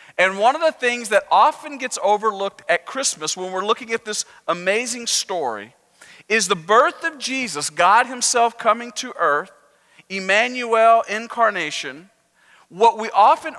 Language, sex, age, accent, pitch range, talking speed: English, male, 40-59, American, 190-240 Hz, 145 wpm